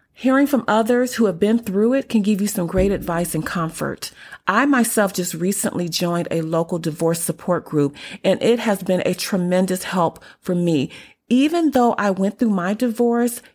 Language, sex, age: English, female, 30-49